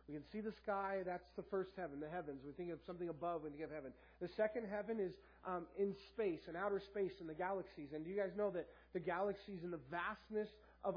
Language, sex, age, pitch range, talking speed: English, male, 30-49, 160-205 Hz, 245 wpm